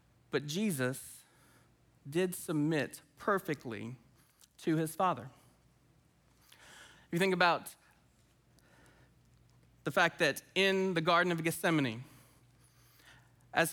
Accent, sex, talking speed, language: American, male, 90 wpm, English